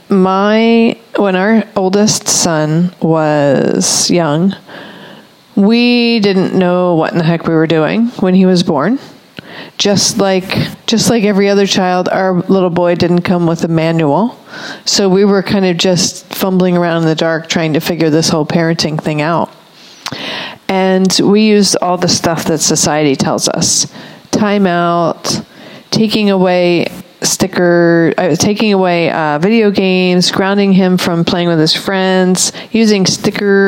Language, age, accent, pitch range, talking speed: English, 40-59, American, 170-200 Hz, 155 wpm